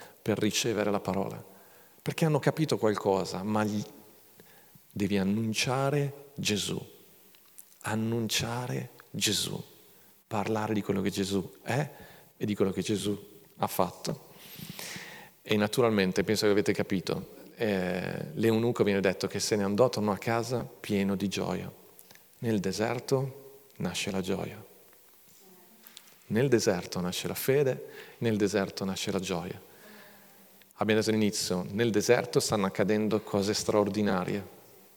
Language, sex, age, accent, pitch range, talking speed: Italian, male, 40-59, native, 100-120 Hz, 120 wpm